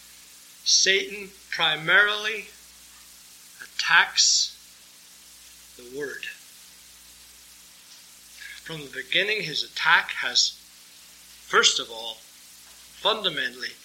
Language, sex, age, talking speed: English, male, 60-79, 65 wpm